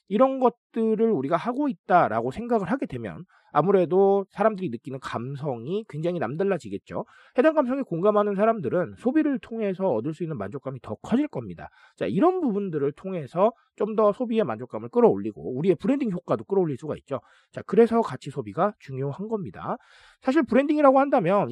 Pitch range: 155-225 Hz